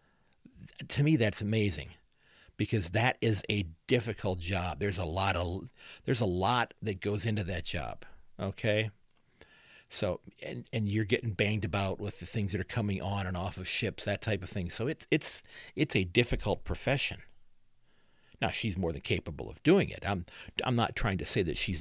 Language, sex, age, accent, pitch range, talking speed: English, male, 50-69, American, 90-115 Hz, 185 wpm